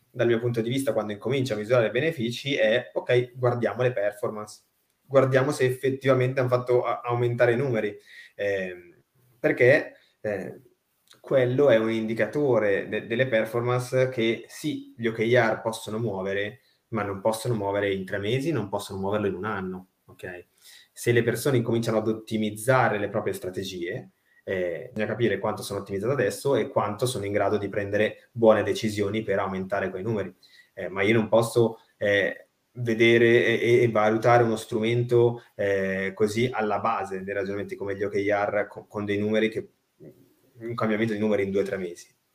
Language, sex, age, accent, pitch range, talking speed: Italian, male, 20-39, native, 105-125 Hz, 165 wpm